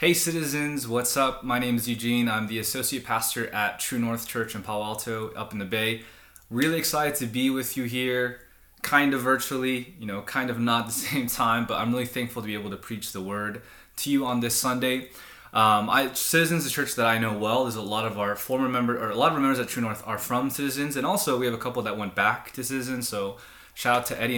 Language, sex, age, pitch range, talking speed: English, male, 20-39, 110-130 Hz, 245 wpm